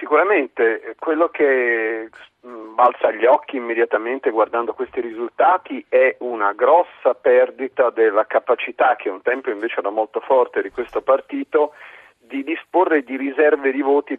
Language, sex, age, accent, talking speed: Italian, male, 40-59, native, 135 wpm